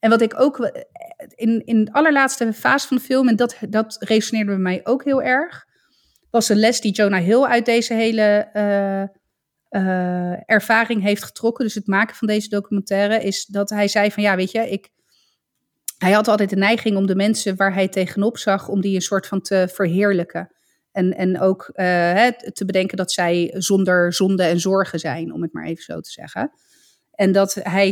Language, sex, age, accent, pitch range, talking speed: Dutch, female, 30-49, Dutch, 180-220 Hz, 195 wpm